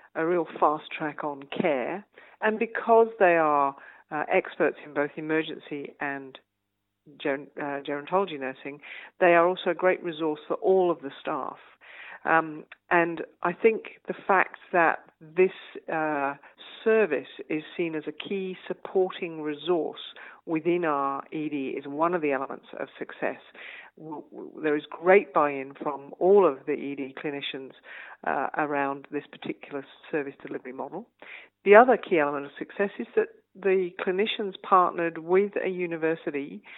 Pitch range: 145-185 Hz